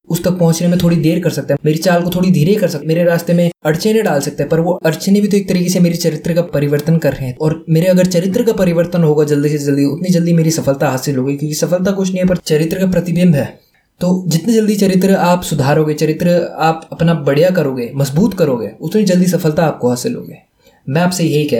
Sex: male